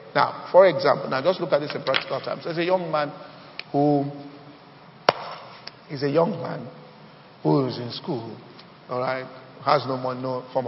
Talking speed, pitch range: 175 wpm, 130-180 Hz